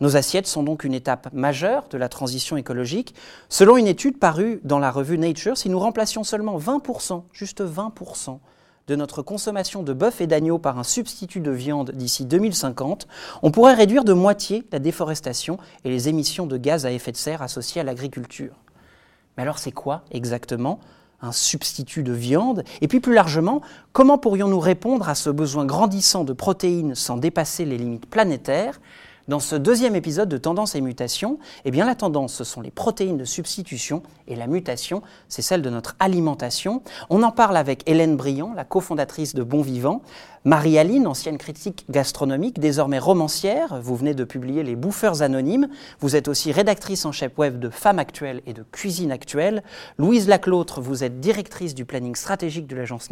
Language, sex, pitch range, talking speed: French, male, 135-195 Hz, 180 wpm